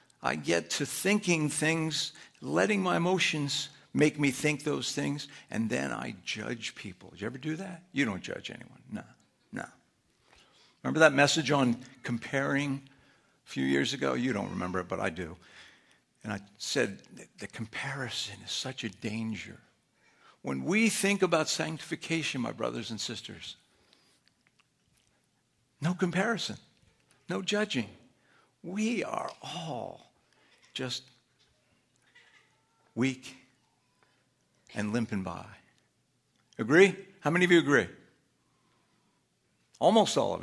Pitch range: 110-160 Hz